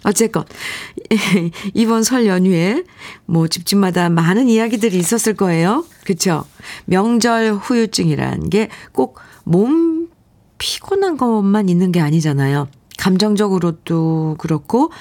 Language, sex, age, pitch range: Korean, female, 40-59, 150-225 Hz